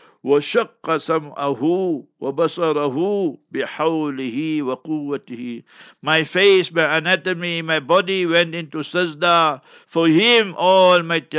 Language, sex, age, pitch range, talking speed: English, male, 60-79, 145-180 Hz, 85 wpm